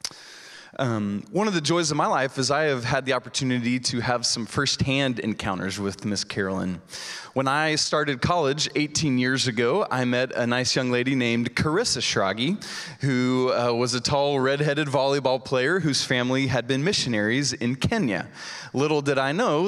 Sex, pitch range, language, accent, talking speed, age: male, 115-140 Hz, English, American, 175 wpm, 20-39